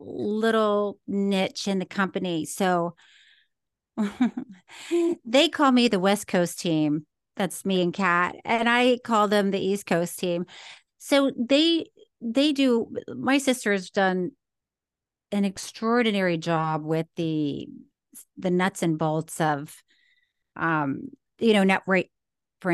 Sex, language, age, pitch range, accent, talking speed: female, English, 40-59, 170-255 Hz, American, 130 wpm